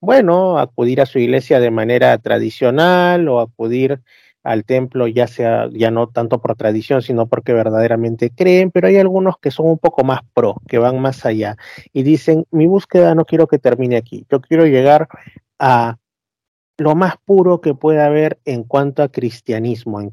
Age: 30-49